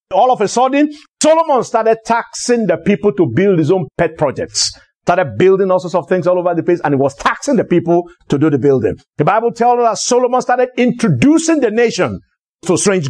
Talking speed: 215 wpm